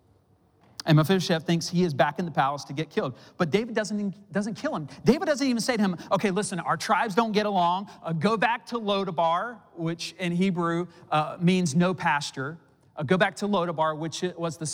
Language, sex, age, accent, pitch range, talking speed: English, male, 40-59, American, 130-185 Hz, 210 wpm